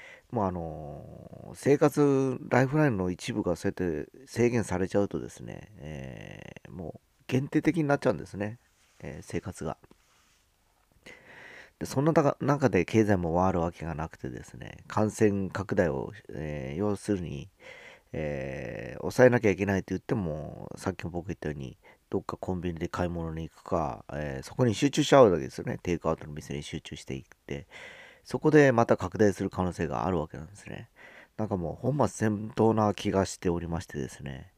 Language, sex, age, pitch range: Japanese, male, 40-59, 85-115 Hz